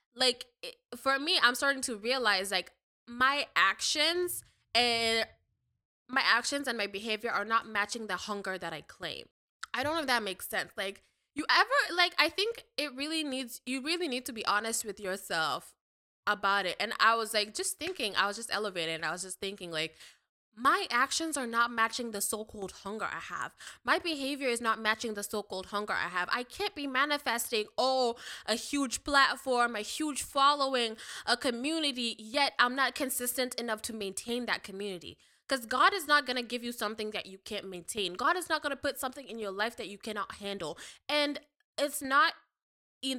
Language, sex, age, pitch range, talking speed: English, female, 10-29, 210-275 Hz, 195 wpm